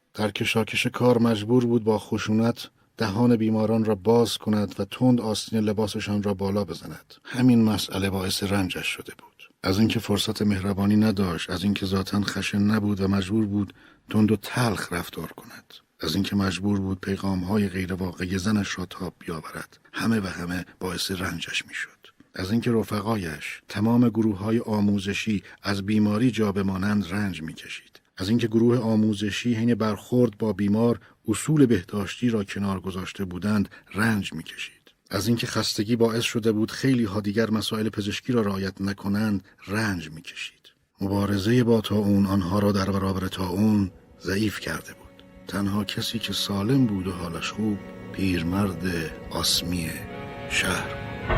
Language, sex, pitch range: Persian, male, 95-110 Hz